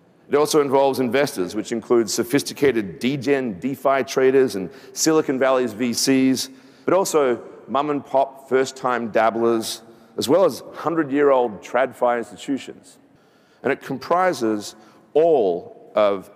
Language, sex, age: English, male, 40-59